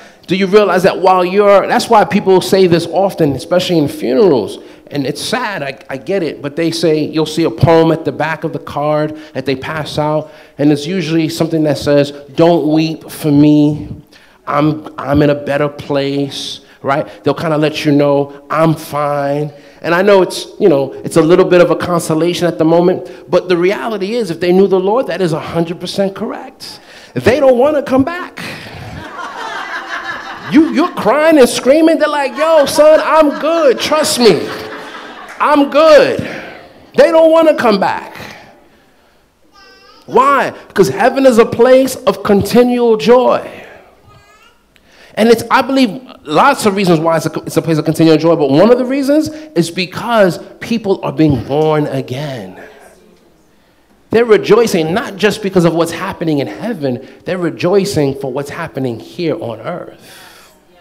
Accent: American